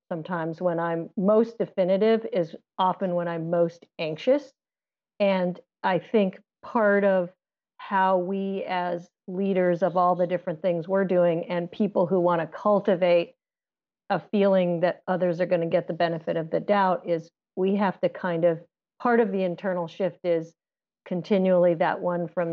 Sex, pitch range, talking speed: female, 175-205 Hz, 165 wpm